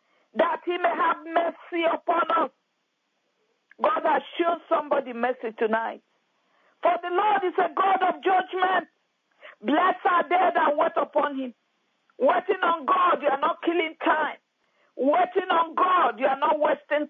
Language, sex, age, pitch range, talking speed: English, female, 50-69, 285-365 Hz, 150 wpm